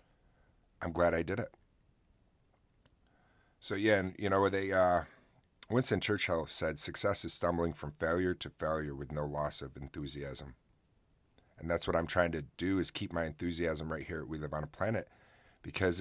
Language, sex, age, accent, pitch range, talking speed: English, male, 30-49, American, 75-90 Hz, 175 wpm